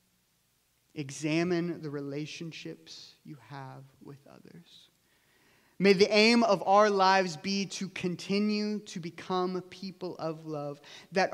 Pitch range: 155-195 Hz